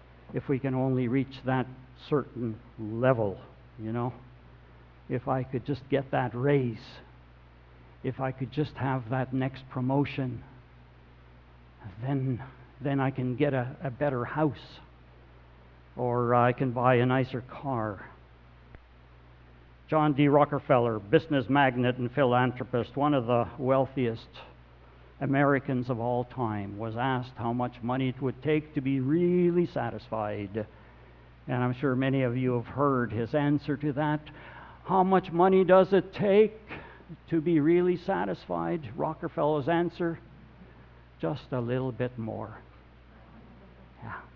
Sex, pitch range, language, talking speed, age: male, 105-150 Hz, English, 135 wpm, 60-79